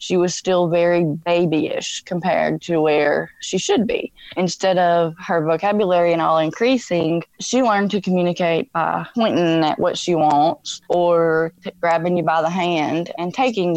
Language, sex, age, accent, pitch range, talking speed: English, female, 20-39, American, 160-195 Hz, 155 wpm